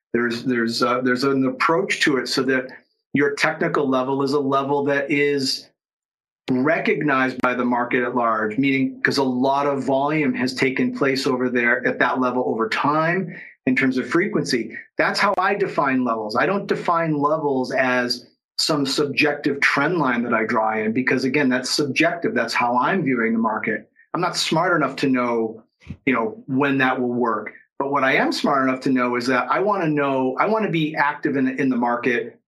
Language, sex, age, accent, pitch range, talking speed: English, male, 40-59, American, 125-145 Hz, 200 wpm